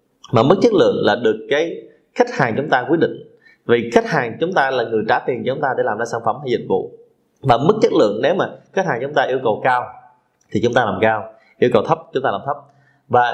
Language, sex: Vietnamese, male